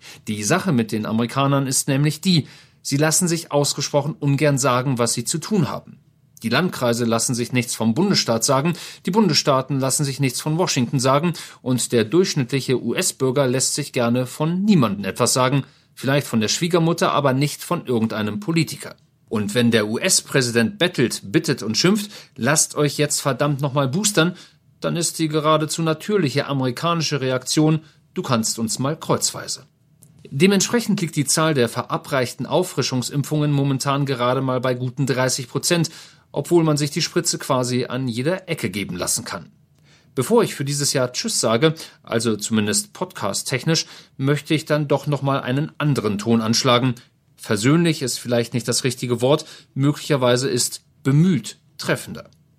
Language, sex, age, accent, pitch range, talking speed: German, male, 40-59, German, 125-160 Hz, 155 wpm